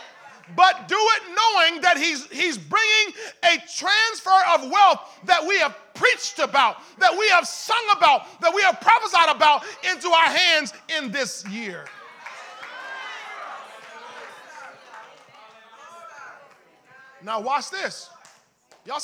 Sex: male